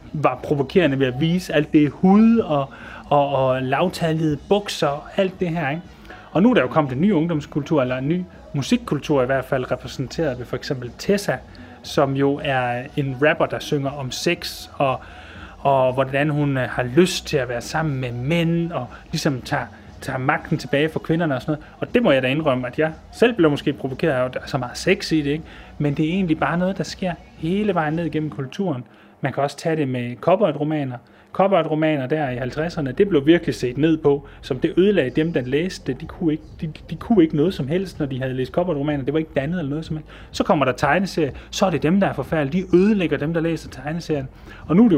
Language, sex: Danish, male